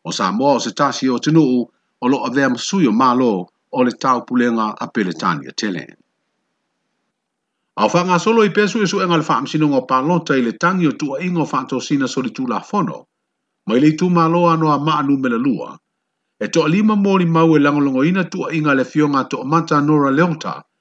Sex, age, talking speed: male, 50-69, 155 wpm